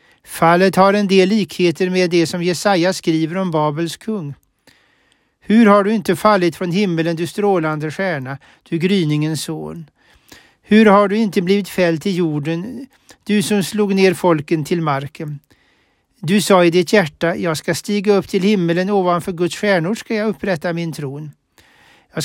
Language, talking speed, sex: Swedish, 165 wpm, male